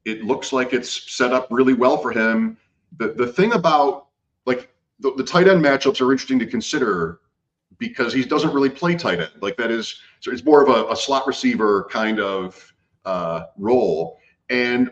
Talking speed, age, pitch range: 190 wpm, 40-59, 100-130 Hz